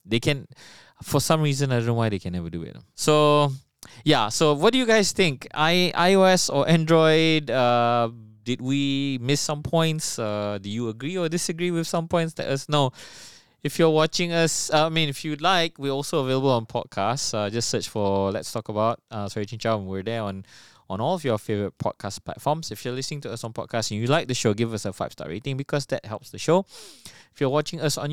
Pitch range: 115-155 Hz